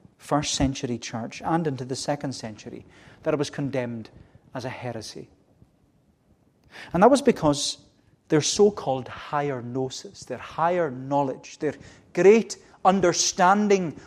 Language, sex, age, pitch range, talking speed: English, male, 40-59, 130-175 Hz, 125 wpm